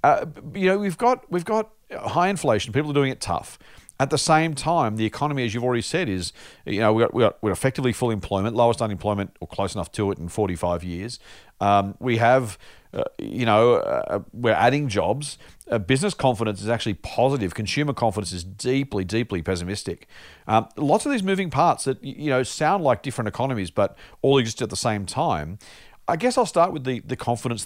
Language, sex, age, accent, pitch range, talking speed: English, male, 40-59, Australian, 105-145 Hz, 200 wpm